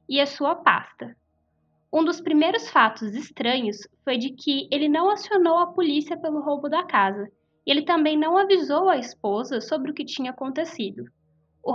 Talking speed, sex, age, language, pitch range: 170 wpm, female, 10-29, Portuguese, 225-315 Hz